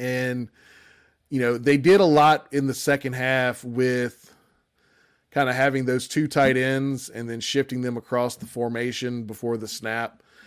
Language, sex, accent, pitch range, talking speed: English, male, American, 115-130 Hz, 165 wpm